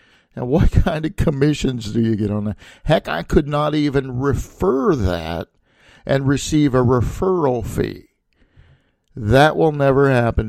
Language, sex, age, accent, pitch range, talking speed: English, male, 50-69, American, 105-140 Hz, 150 wpm